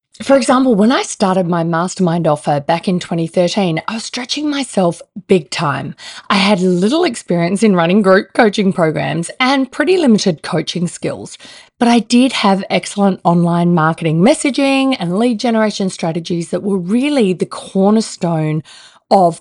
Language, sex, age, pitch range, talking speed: English, female, 30-49, 165-220 Hz, 150 wpm